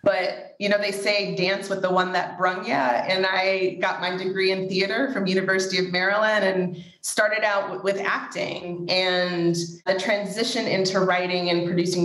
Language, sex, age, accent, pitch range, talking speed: English, female, 30-49, American, 175-200 Hz, 180 wpm